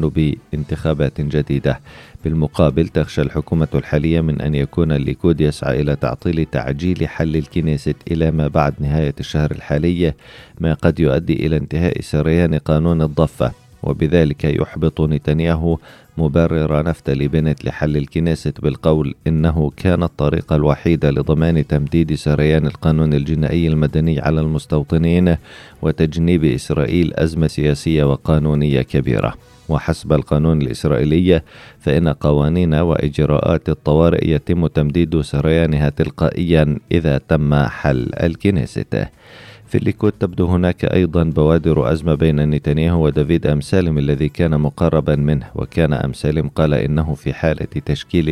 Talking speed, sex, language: 120 wpm, male, Arabic